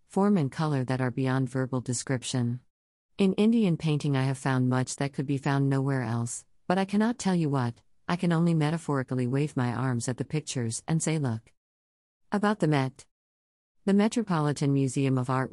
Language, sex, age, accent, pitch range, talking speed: English, female, 50-69, American, 130-160 Hz, 185 wpm